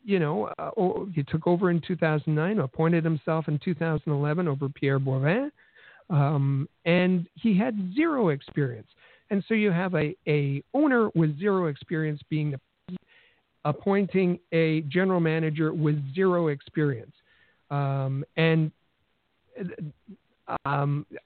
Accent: American